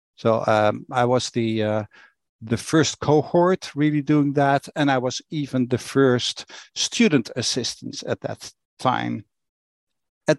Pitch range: 120-150 Hz